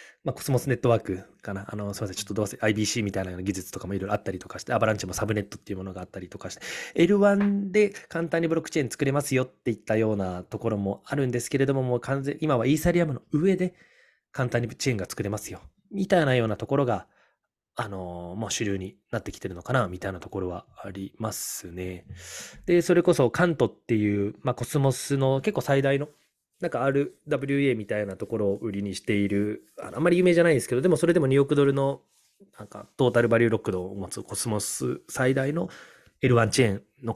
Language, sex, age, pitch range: Japanese, male, 20-39, 100-140 Hz